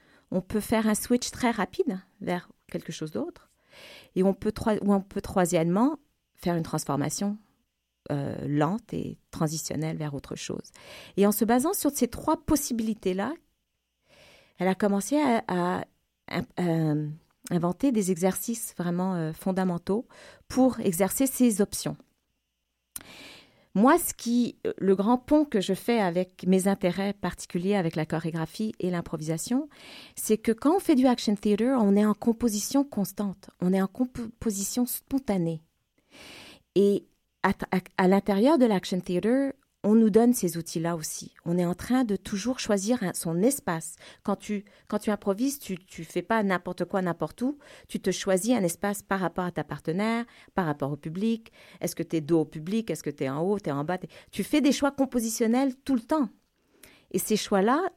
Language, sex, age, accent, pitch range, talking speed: French, female, 40-59, French, 175-240 Hz, 170 wpm